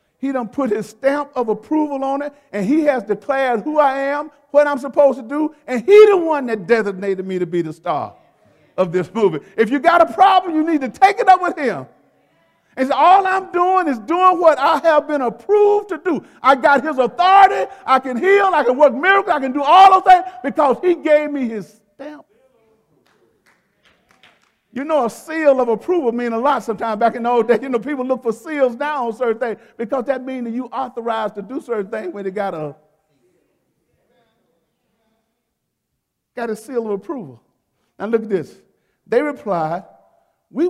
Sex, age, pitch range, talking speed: male, 50-69, 220-305 Hz, 200 wpm